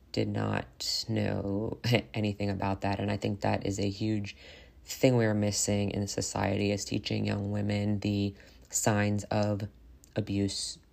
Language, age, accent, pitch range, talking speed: English, 20-39, American, 95-105 Hz, 150 wpm